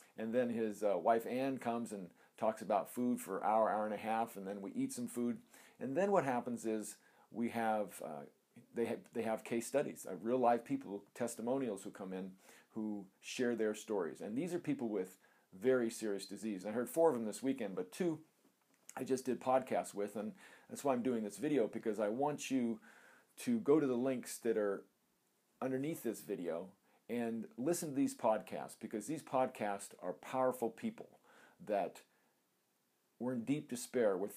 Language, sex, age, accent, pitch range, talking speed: English, male, 40-59, American, 105-130 Hz, 195 wpm